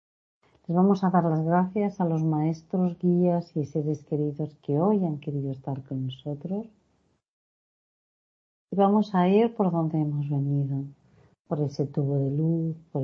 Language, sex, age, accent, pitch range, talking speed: Spanish, female, 40-59, Spanish, 140-165 Hz, 155 wpm